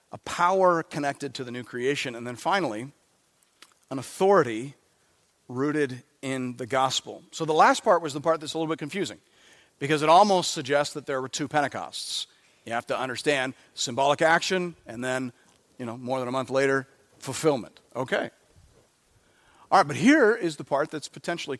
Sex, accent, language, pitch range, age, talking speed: male, American, English, 135-195 Hz, 40-59, 175 wpm